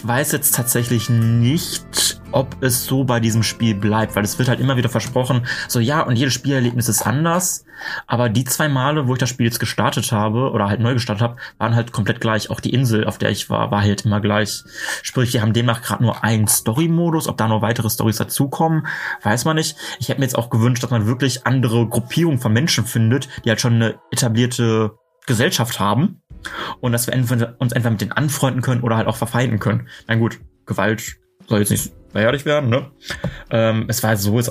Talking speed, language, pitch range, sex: 215 wpm, German, 110-125 Hz, male